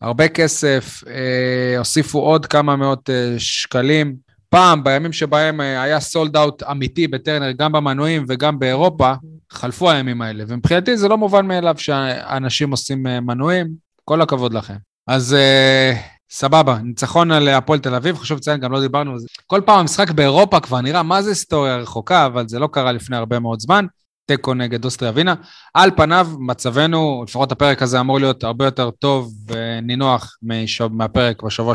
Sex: male